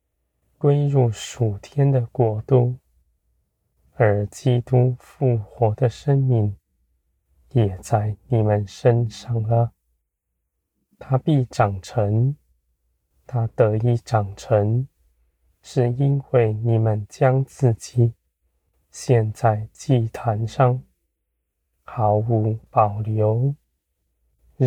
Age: 20-39